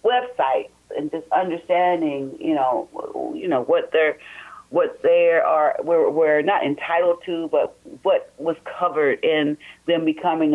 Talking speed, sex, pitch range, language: 140 wpm, female, 140-225 Hz, English